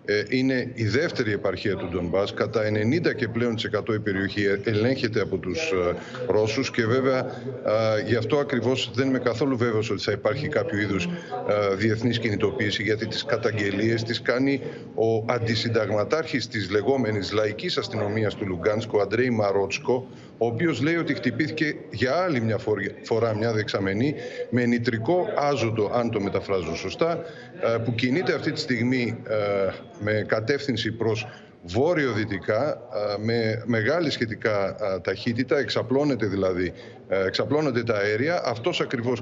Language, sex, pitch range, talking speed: Greek, male, 105-125 Hz, 130 wpm